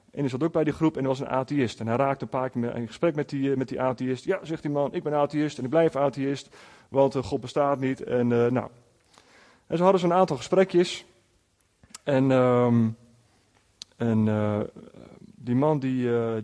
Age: 30-49